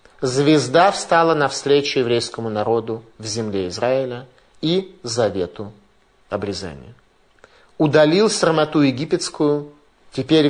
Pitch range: 120-160 Hz